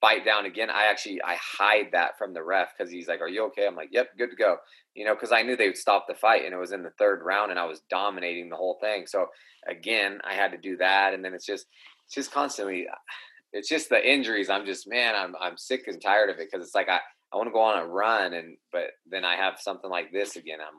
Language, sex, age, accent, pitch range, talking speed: English, male, 20-39, American, 85-95 Hz, 275 wpm